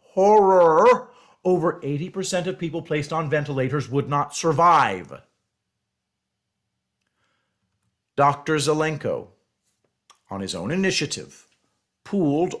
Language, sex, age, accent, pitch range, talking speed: English, male, 50-69, American, 135-170 Hz, 85 wpm